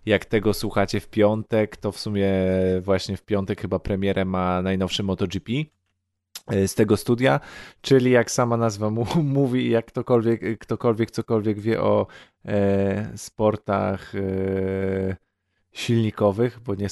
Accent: native